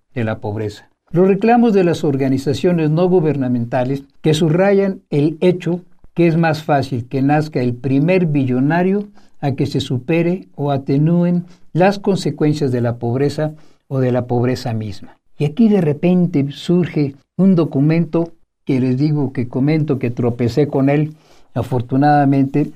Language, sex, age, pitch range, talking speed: Spanish, male, 60-79, 135-175 Hz, 150 wpm